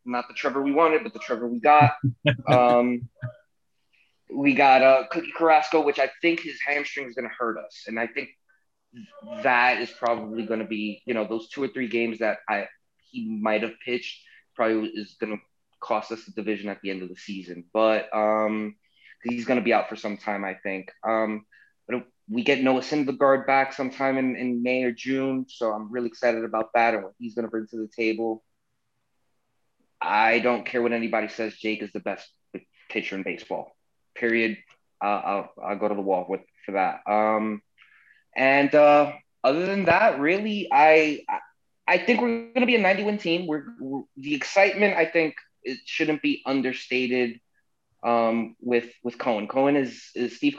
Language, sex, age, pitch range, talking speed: English, male, 20-39, 110-140 Hz, 190 wpm